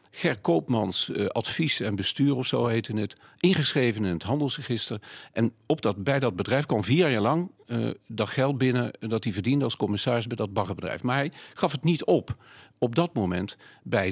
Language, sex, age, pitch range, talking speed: Dutch, male, 50-69, 100-125 Hz, 195 wpm